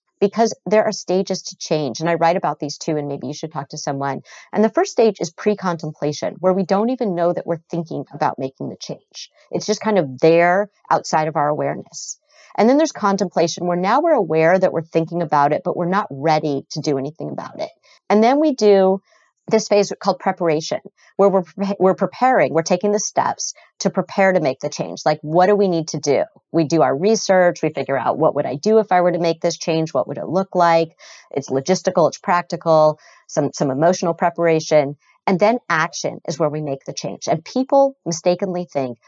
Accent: American